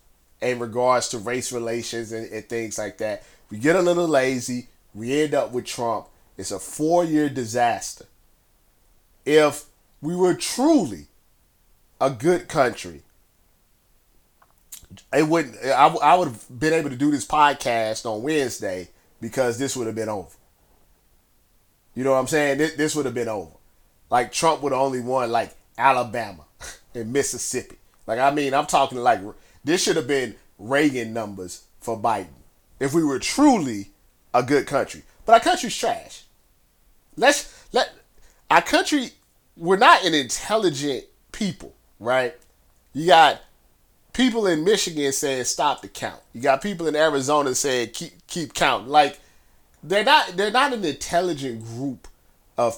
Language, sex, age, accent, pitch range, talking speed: English, male, 30-49, American, 115-155 Hz, 150 wpm